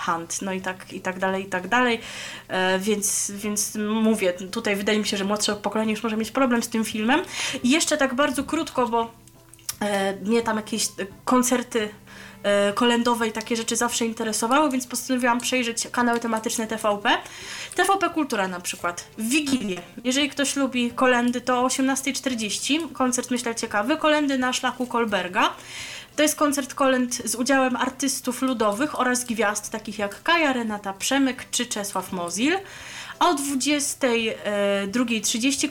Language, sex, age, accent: Polish, female, 20-39, native